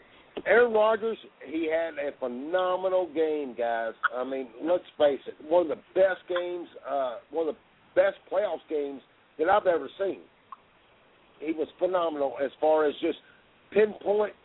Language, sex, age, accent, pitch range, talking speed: English, male, 50-69, American, 155-195 Hz, 155 wpm